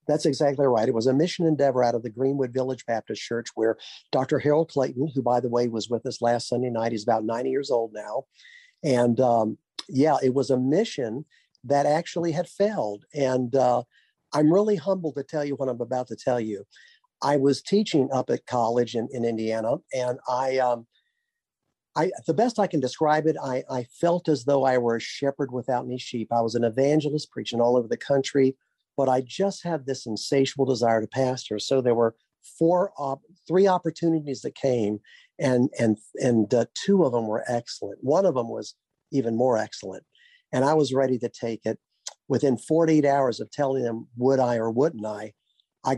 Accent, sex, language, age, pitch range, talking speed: American, male, English, 50-69, 120-150 Hz, 200 wpm